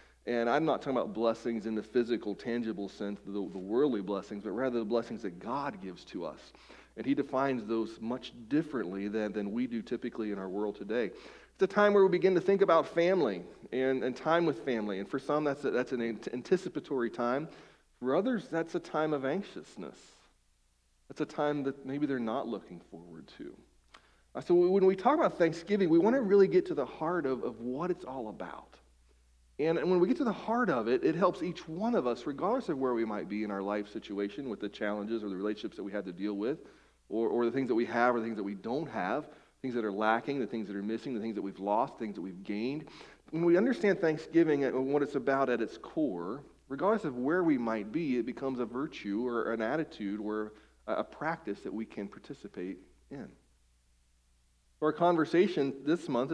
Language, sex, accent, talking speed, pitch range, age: English, male, American, 220 wpm, 105-160 Hz, 40-59